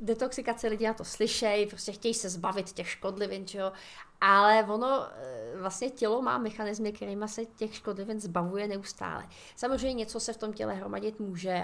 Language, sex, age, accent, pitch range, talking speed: Czech, female, 30-49, native, 190-220 Hz, 160 wpm